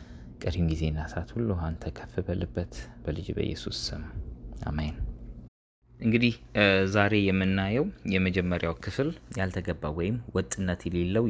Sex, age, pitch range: male, 20-39, 80-105 Hz